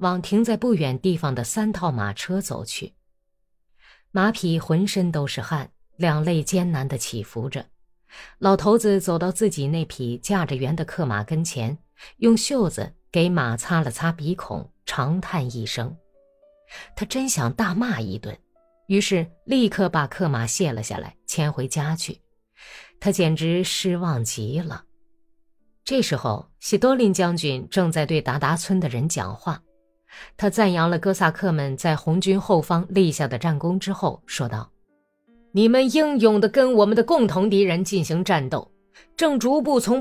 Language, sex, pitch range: Chinese, female, 160-220 Hz